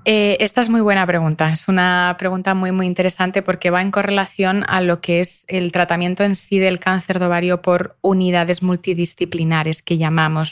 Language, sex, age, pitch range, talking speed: Spanish, female, 30-49, 170-200 Hz, 190 wpm